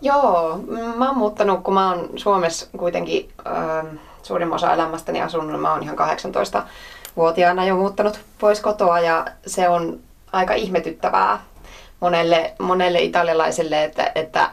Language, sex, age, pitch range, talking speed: Finnish, female, 20-39, 160-195 Hz, 130 wpm